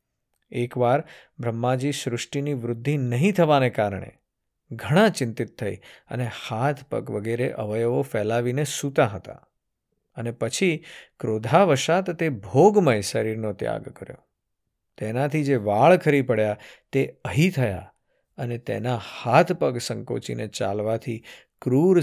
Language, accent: Gujarati, native